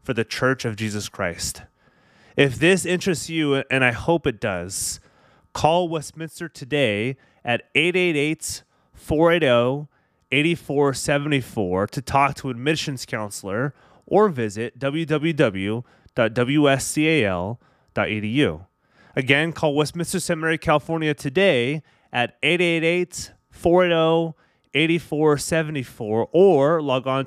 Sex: male